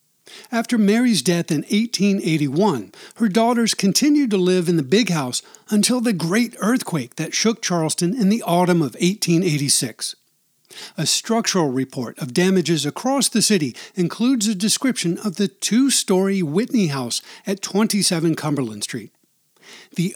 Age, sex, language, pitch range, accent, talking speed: 50-69, male, English, 155-215 Hz, American, 140 wpm